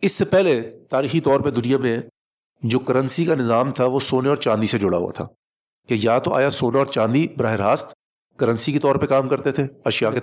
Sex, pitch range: male, 125-155 Hz